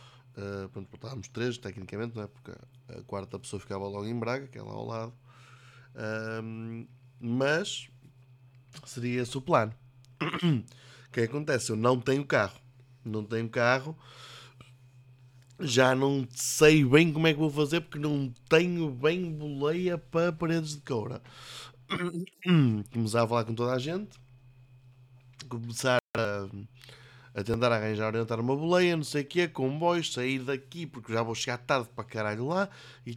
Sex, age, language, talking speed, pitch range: male, 20-39, Portuguese, 155 wpm, 125-155 Hz